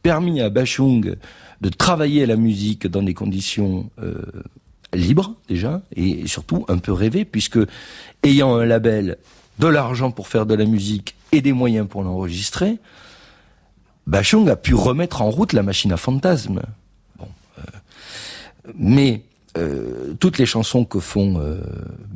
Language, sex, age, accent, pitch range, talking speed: French, male, 50-69, French, 90-130 Hz, 145 wpm